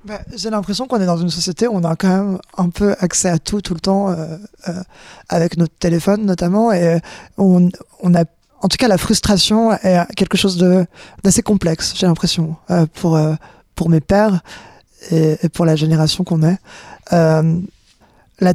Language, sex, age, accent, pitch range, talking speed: French, male, 20-39, French, 165-195 Hz, 195 wpm